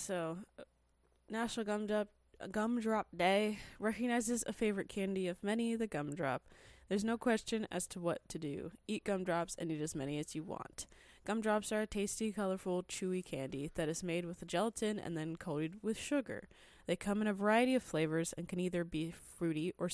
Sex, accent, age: female, American, 20-39